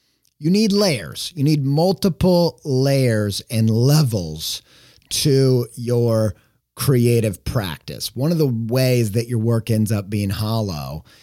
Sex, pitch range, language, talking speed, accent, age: male, 105-135 Hz, English, 130 wpm, American, 30-49